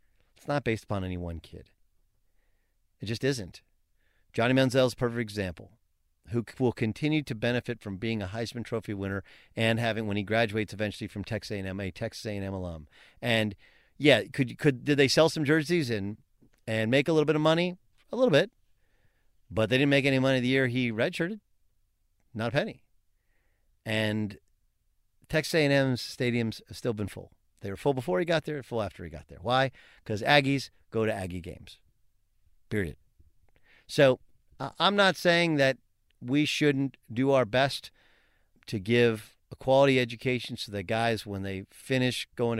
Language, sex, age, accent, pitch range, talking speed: English, male, 40-59, American, 100-135 Hz, 175 wpm